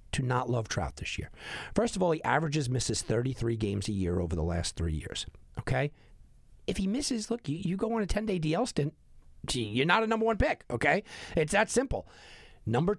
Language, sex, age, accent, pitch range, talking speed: English, male, 50-69, American, 105-160 Hz, 210 wpm